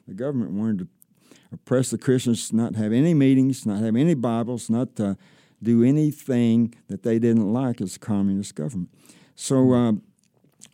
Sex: male